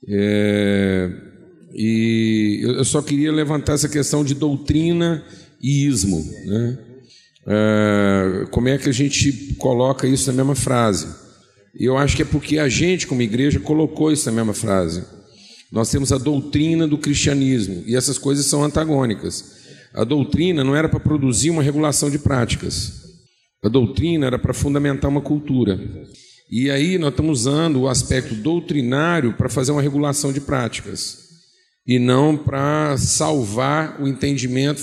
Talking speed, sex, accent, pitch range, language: 150 wpm, male, Brazilian, 120-150 Hz, Portuguese